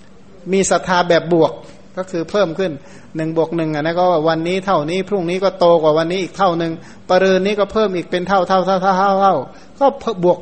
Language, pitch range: Thai, 160-190 Hz